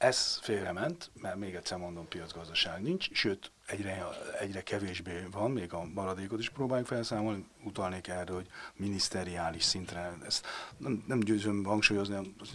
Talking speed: 140 wpm